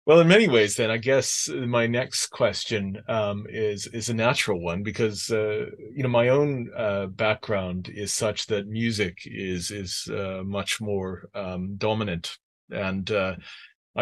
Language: English